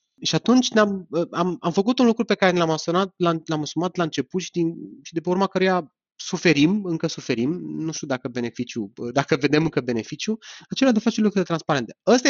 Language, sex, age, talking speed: Romanian, male, 30-49, 195 wpm